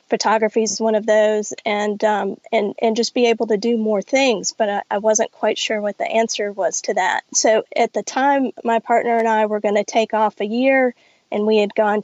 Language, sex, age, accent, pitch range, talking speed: English, female, 30-49, American, 210-235 Hz, 235 wpm